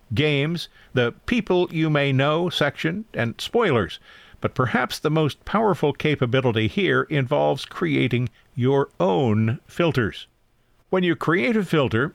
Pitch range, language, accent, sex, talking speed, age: 120-165 Hz, English, American, male, 130 wpm, 50-69